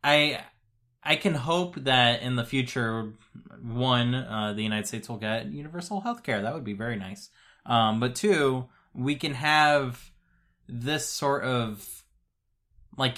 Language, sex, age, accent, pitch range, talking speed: English, male, 20-39, American, 110-130 Hz, 150 wpm